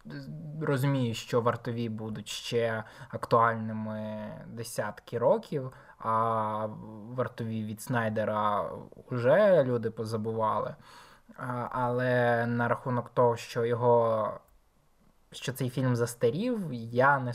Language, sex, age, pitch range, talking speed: Ukrainian, male, 20-39, 115-130 Hz, 95 wpm